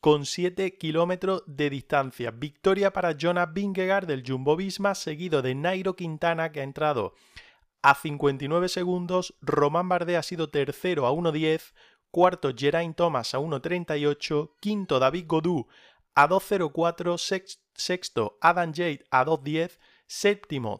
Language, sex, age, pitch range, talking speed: Spanish, male, 30-49, 140-180 Hz, 130 wpm